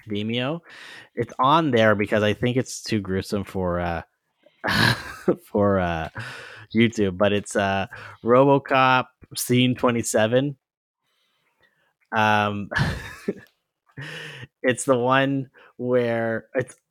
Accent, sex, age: American, male, 30-49